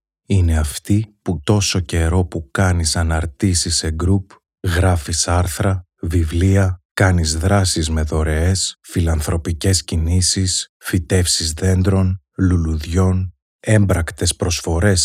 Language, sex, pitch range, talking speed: Greek, male, 80-95 Hz, 95 wpm